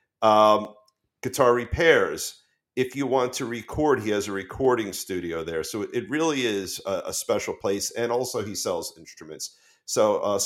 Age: 50-69